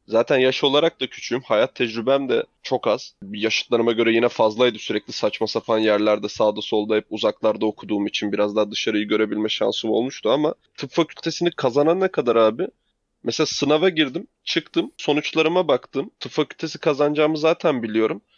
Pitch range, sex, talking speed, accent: 115-155 Hz, male, 155 wpm, native